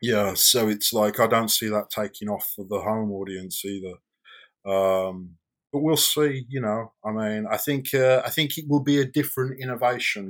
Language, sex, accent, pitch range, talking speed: English, male, British, 95-120 Hz, 205 wpm